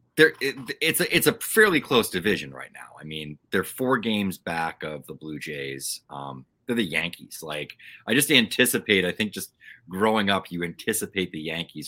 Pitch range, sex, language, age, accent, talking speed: 75-95 Hz, male, English, 30-49, American, 185 wpm